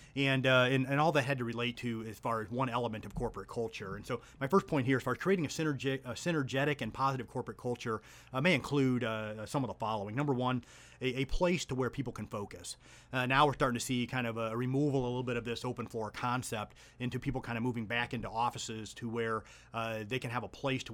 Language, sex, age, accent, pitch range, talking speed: English, male, 30-49, American, 115-130 Hz, 255 wpm